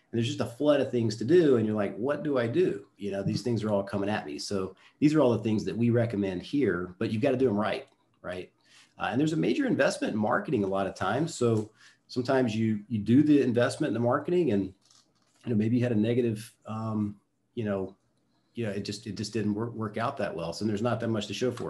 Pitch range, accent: 100-125 Hz, American